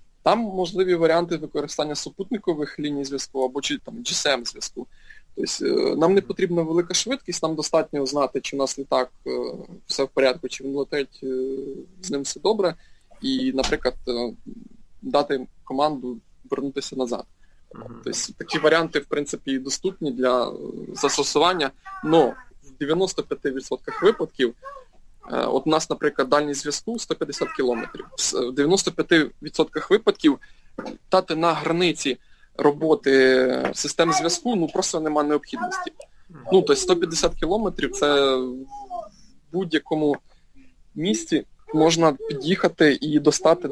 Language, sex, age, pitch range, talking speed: Ukrainian, male, 20-39, 140-190 Hz, 120 wpm